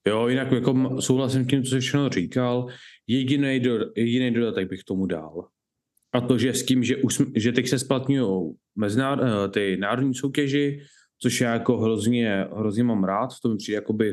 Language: Czech